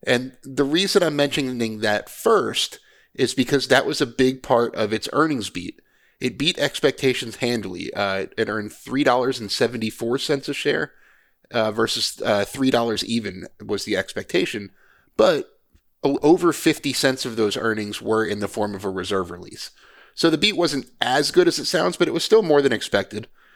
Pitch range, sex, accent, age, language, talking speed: 100-130 Hz, male, American, 30-49, English, 170 wpm